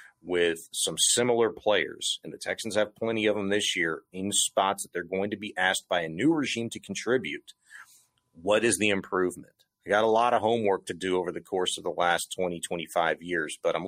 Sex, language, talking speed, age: male, English, 215 wpm, 40-59